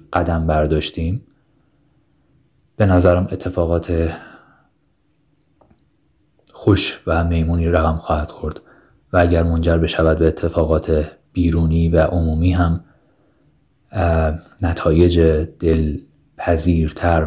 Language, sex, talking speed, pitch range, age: Persian, male, 85 wpm, 80-90 Hz, 30-49